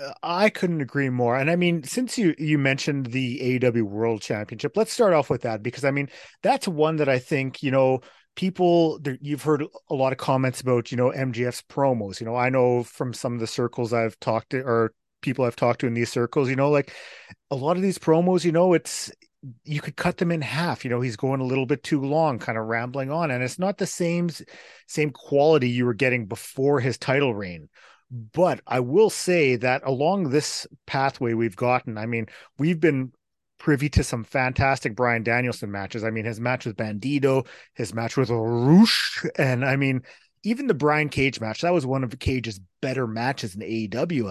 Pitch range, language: 120-150 Hz, English